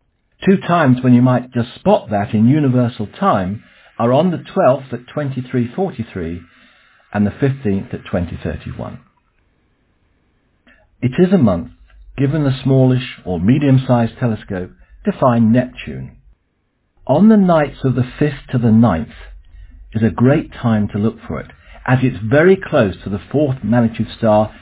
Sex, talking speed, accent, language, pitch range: male, 150 wpm, British, English, 95-130 Hz